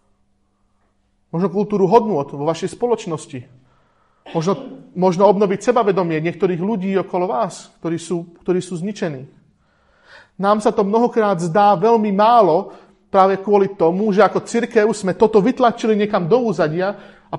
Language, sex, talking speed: Slovak, male, 135 wpm